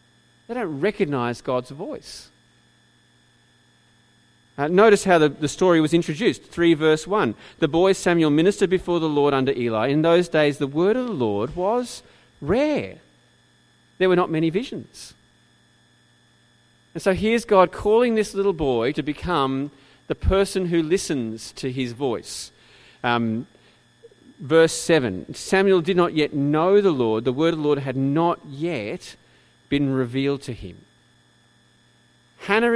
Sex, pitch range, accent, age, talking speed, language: male, 120-180 Hz, Australian, 40-59, 145 wpm, English